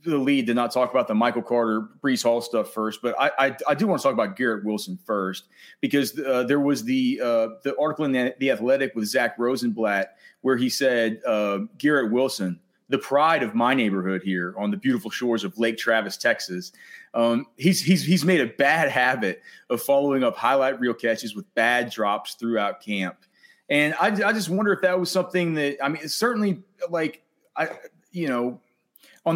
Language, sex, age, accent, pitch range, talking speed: English, male, 30-49, American, 115-170 Hz, 200 wpm